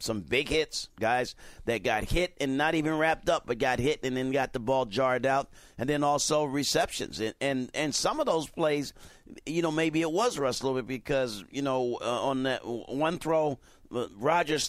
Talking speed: 200 wpm